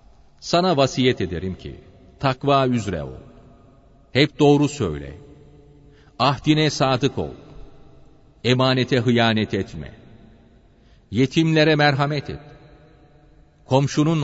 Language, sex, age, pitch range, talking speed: Turkish, male, 40-59, 110-150 Hz, 85 wpm